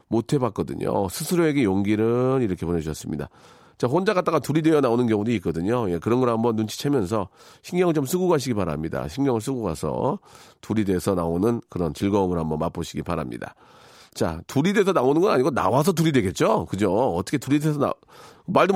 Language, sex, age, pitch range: Korean, male, 40-59, 100-155 Hz